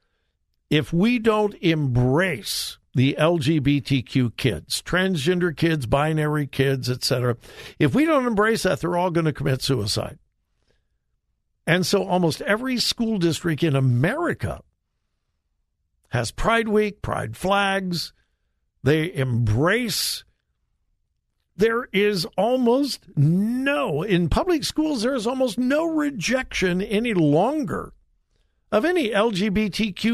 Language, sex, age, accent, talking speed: English, male, 60-79, American, 110 wpm